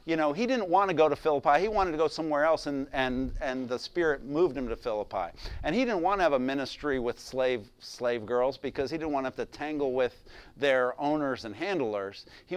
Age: 50-69